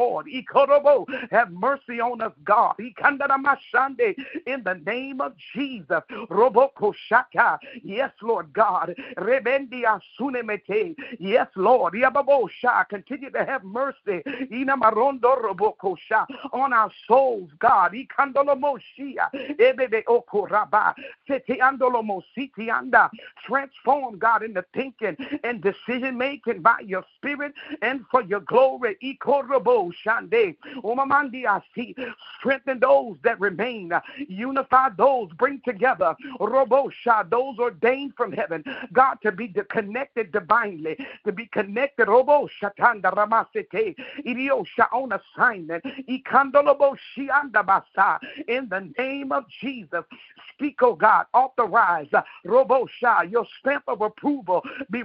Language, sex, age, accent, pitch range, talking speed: English, male, 50-69, American, 220-275 Hz, 100 wpm